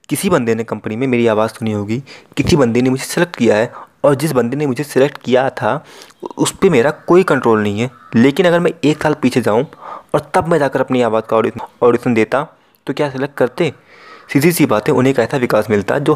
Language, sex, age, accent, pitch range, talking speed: Hindi, male, 20-39, native, 115-150 Hz, 220 wpm